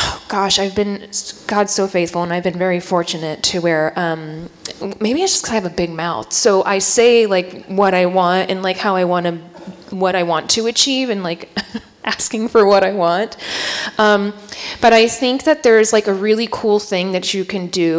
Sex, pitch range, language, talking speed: female, 170-200 Hz, English, 210 wpm